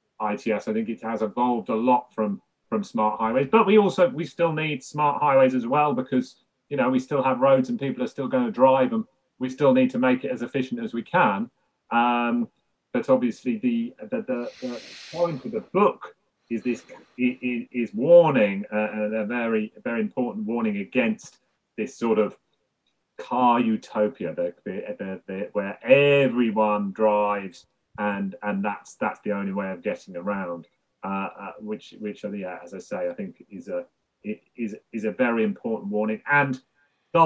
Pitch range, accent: 105-175 Hz, British